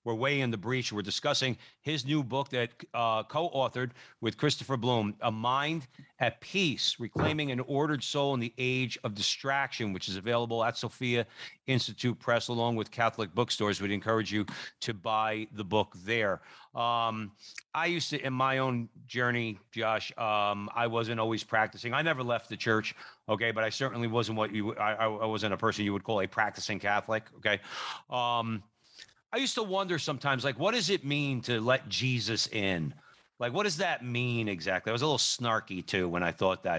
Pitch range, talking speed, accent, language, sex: 110-130 Hz, 190 wpm, American, English, male